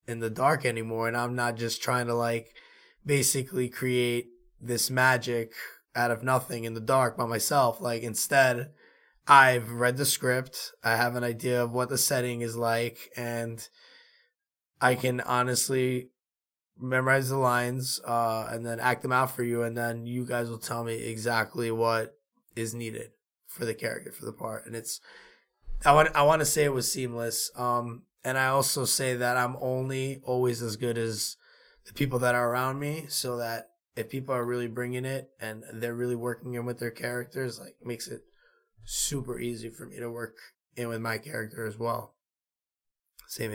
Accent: American